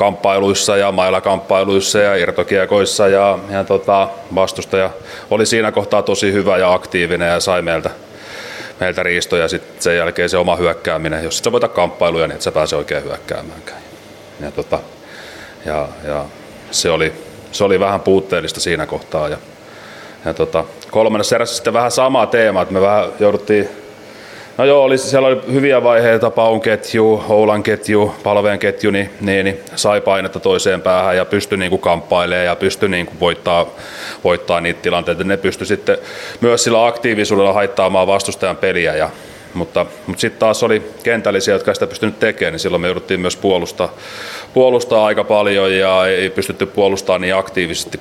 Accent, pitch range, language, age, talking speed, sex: native, 95-105 Hz, Finnish, 30-49, 150 wpm, male